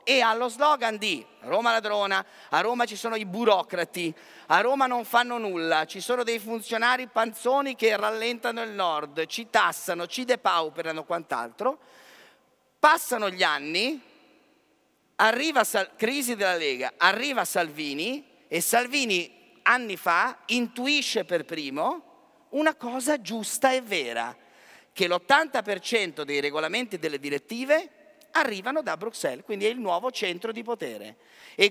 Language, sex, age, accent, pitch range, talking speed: Italian, male, 40-59, native, 170-265 Hz, 135 wpm